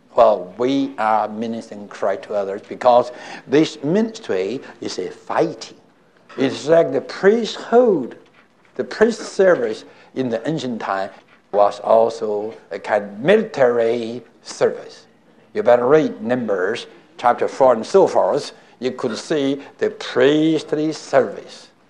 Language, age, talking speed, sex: English, 60-79, 125 wpm, male